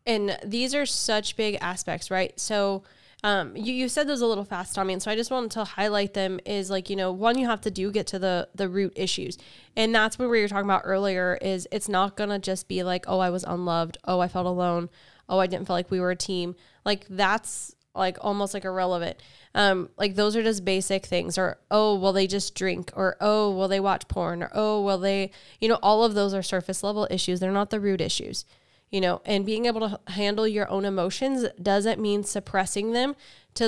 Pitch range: 185-210 Hz